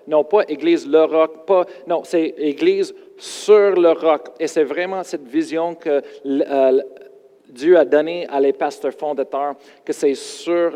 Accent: Canadian